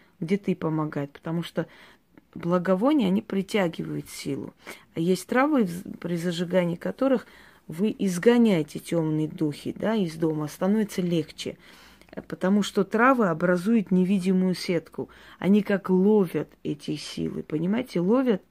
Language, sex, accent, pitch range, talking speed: Russian, female, native, 175-215 Hz, 115 wpm